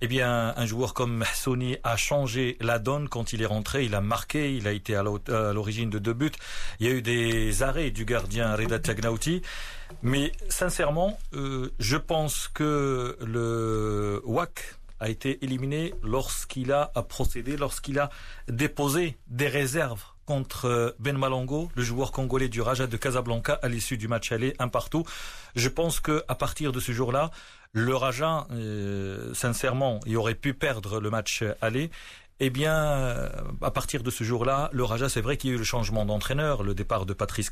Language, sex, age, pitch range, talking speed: Arabic, male, 40-59, 115-145 Hz, 180 wpm